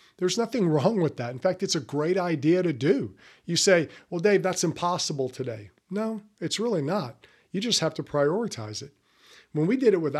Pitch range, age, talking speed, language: 135-185 Hz, 50-69, 205 wpm, English